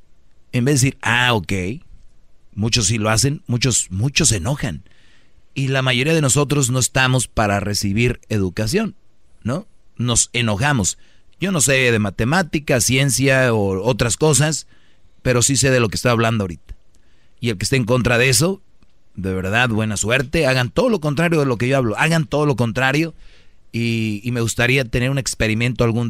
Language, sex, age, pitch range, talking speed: Spanish, male, 30-49, 110-135 Hz, 180 wpm